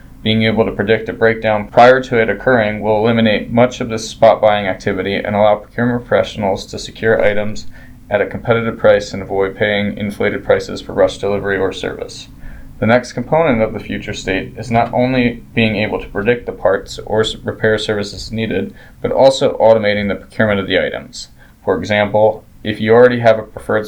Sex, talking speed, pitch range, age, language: male, 190 wpm, 105-120 Hz, 20-39, English